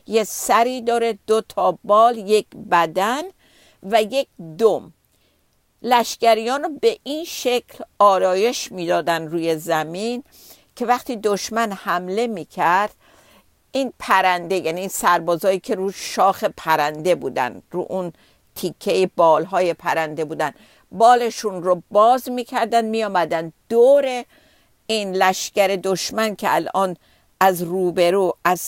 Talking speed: 115 wpm